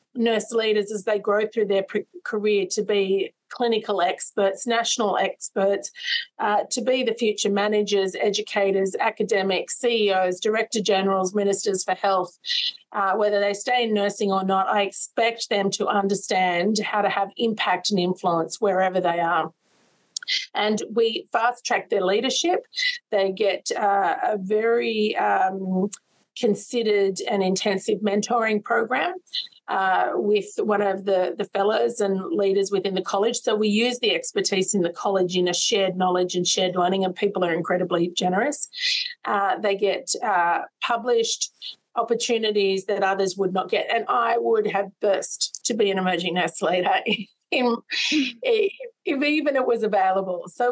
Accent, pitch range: Australian, 195-235 Hz